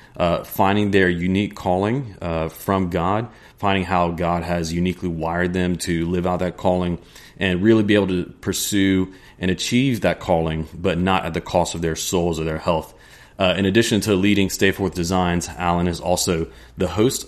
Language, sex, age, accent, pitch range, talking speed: English, male, 30-49, American, 85-100 Hz, 190 wpm